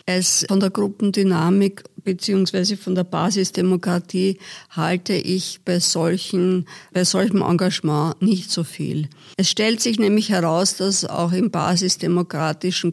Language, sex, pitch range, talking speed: German, female, 175-200 Hz, 125 wpm